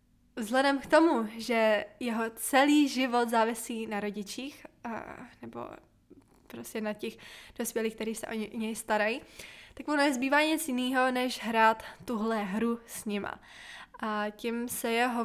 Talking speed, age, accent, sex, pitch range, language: 140 wpm, 20-39, native, female, 225-260 Hz, Czech